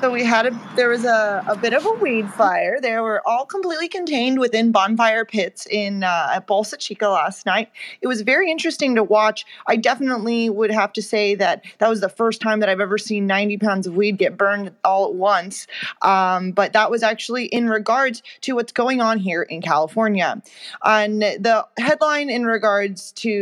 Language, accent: English, American